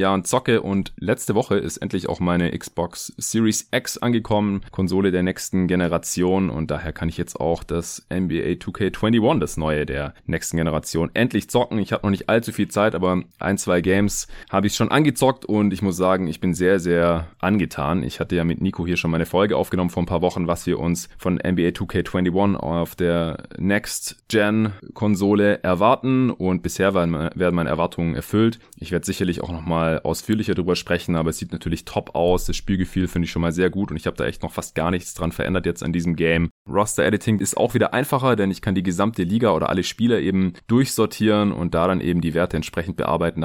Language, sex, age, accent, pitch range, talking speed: German, male, 30-49, German, 85-100 Hz, 210 wpm